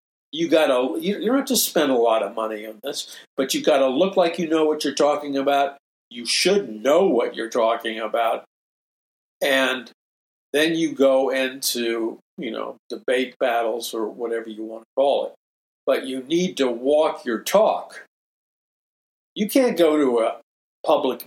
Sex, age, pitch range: male, 60-79, 125-170 Hz